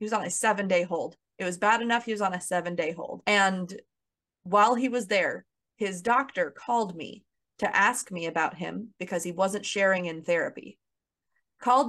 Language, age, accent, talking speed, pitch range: English, 20-39, American, 185 wpm, 175-210 Hz